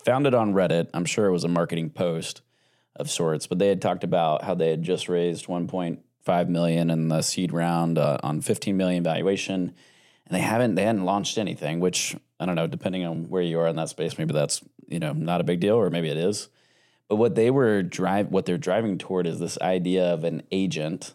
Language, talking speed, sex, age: English, 225 wpm, male, 20-39